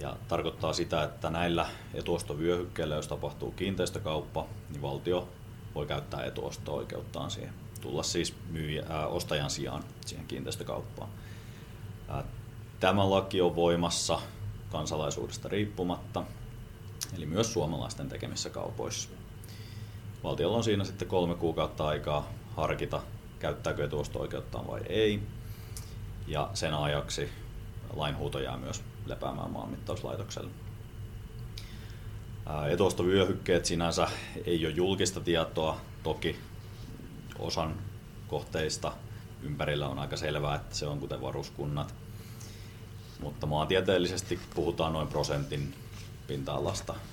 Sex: male